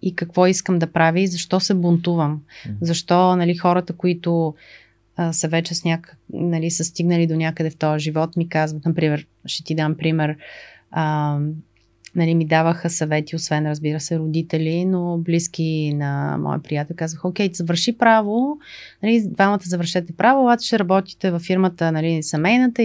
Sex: female